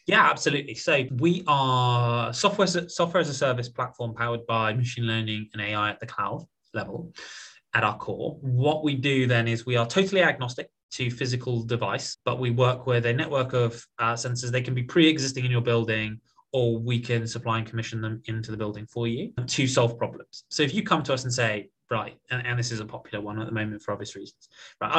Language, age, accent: English, 20-39, British